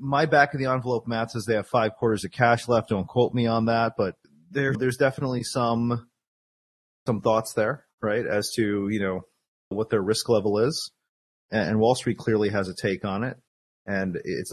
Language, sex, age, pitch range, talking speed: English, male, 30-49, 110-130 Hz, 200 wpm